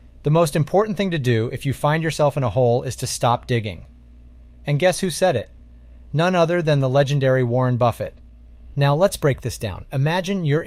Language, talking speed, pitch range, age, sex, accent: English, 200 wpm, 110-150 Hz, 30-49, male, American